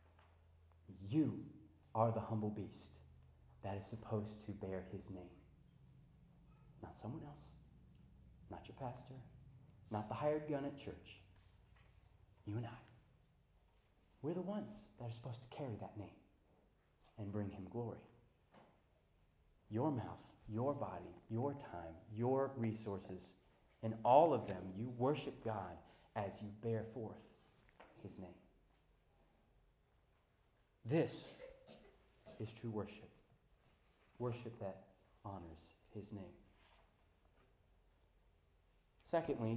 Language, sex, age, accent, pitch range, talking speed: English, male, 30-49, American, 95-130 Hz, 110 wpm